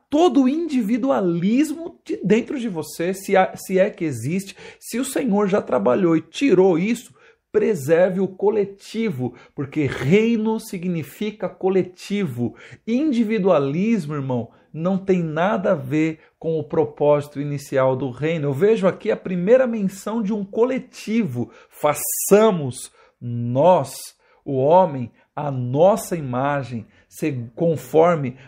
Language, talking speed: Portuguese, 120 wpm